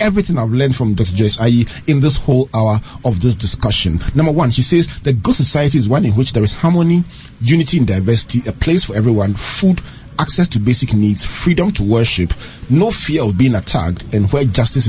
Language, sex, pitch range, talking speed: English, male, 105-140 Hz, 205 wpm